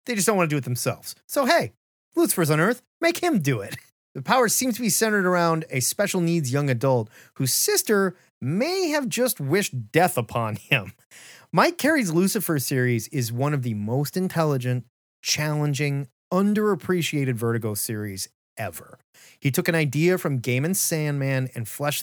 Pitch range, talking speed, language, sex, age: 120-170 Hz, 170 wpm, English, male, 30-49